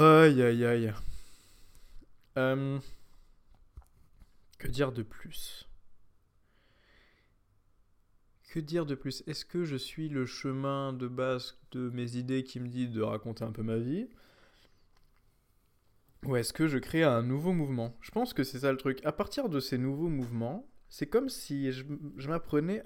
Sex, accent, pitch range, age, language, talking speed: male, French, 95-135 Hz, 20-39, French, 155 wpm